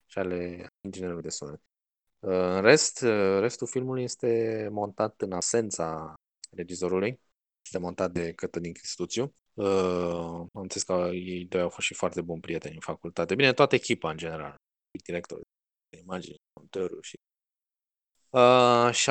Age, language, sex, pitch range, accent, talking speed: 20-39, Romanian, male, 90-120 Hz, native, 140 wpm